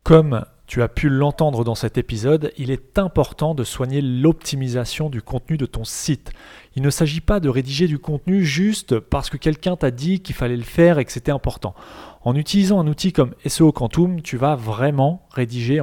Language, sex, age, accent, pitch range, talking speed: French, male, 30-49, French, 130-170 Hz, 195 wpm